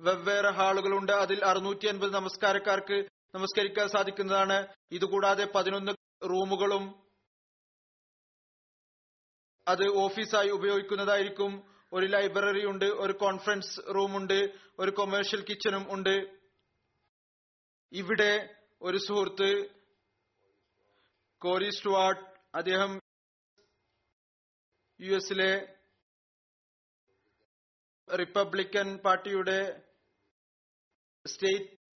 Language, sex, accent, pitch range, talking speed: Malayalam, male, native, 190-200 Hz, 60 wpm